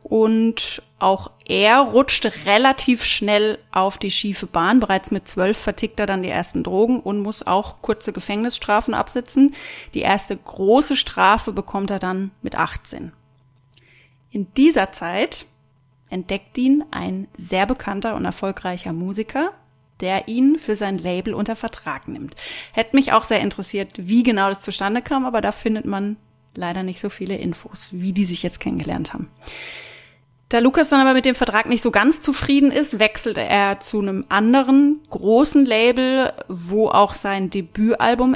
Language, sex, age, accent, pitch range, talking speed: German, female, 30-49, German, 195-245 Hz, 160 wpm